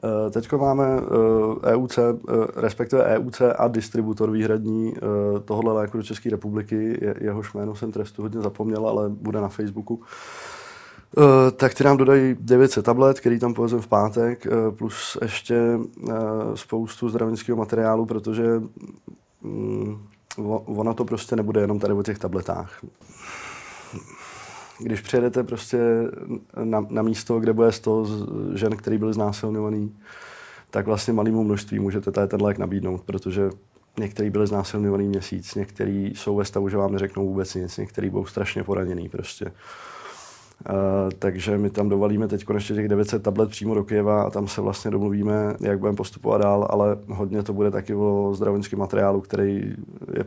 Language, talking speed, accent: Czech, 145 wpm, native